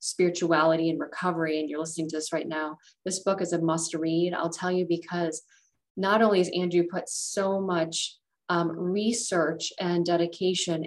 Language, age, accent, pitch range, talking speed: English, 30-49, American, 165-190 Hz, 170 wpm